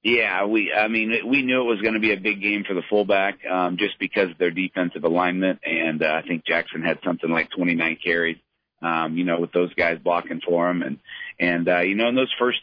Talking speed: 240 wpm